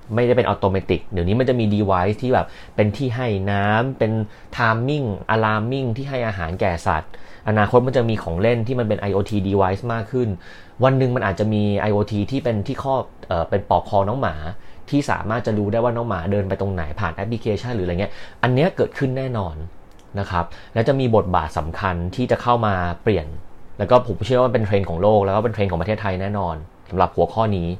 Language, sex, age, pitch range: Thai, male, 30-49, 95-120 Hz